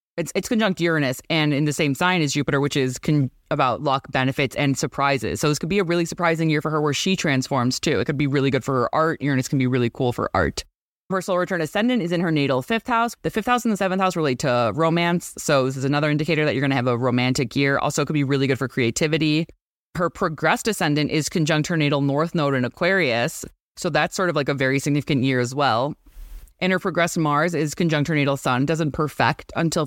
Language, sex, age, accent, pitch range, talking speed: English, female, 20-39, American, 130-165 Hz, 245 wpm